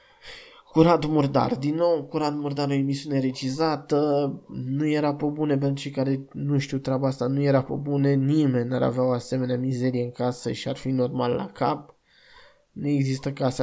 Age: 20-39